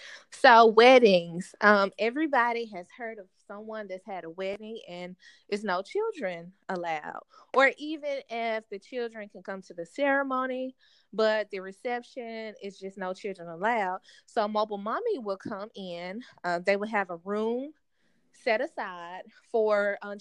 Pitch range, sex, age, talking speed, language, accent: 185-235 Hz, female, 20-39, 155 wpm, English, American